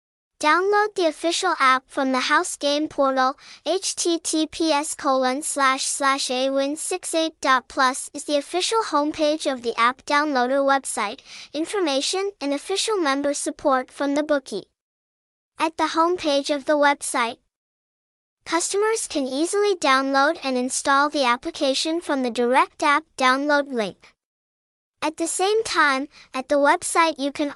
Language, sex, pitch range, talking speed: English, male, 270-330 Hz, 125 wpm